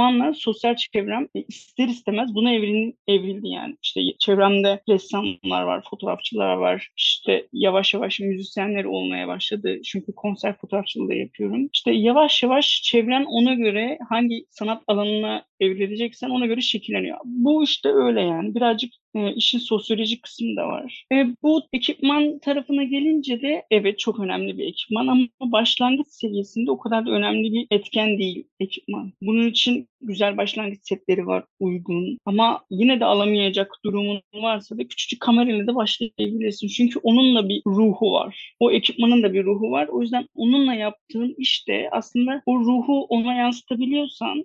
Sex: female